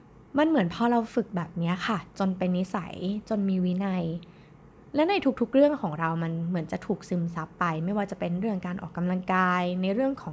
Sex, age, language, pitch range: female, 20-39, Thai, 170-225 Hz